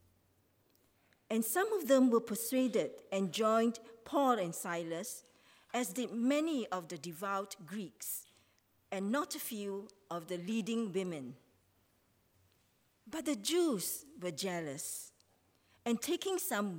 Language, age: English, 50-69